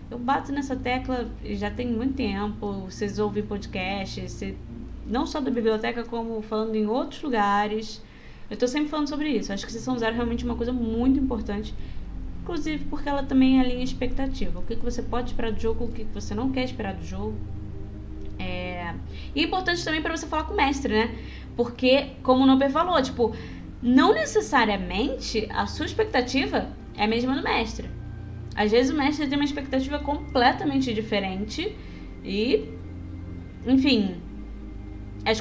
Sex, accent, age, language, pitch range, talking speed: female, Brazilian, 10-29, Portuguese, 210-270 Hz, 170 wpm